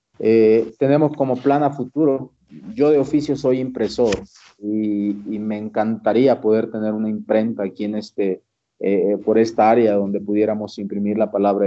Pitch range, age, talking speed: 105-120 Hz, 40-59, 160 wpm